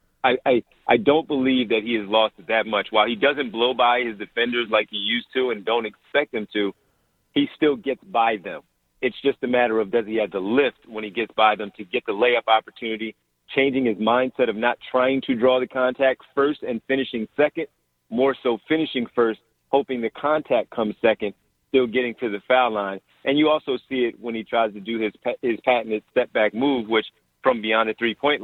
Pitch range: 110-135 Hz